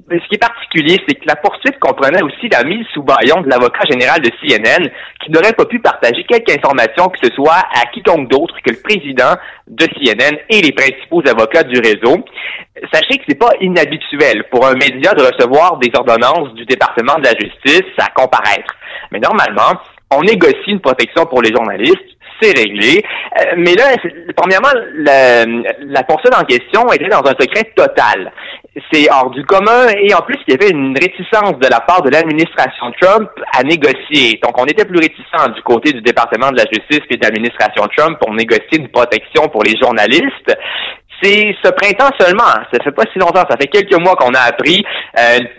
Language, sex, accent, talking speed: French, male, French, 195 wpm